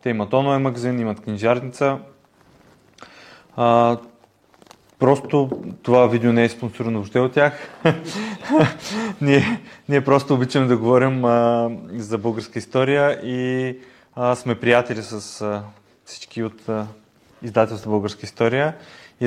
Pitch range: 110-130 Hz